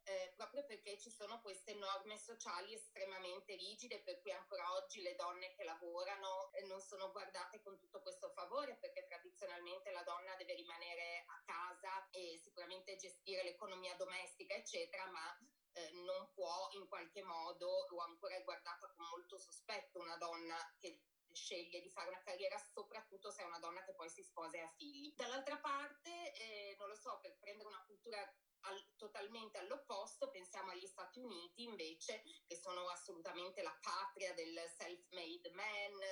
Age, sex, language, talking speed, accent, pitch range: 20-39, female, Italian, 170 wpm, native, 175-215 Hz